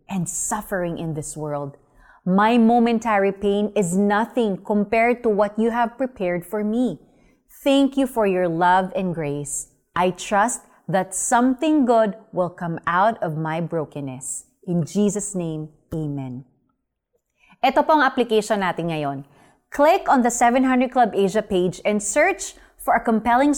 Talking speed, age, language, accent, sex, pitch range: 150 wpm, 20-39, Filipino, native, female, 165-235 Hz